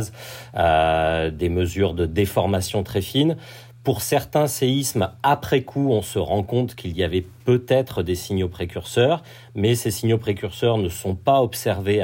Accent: French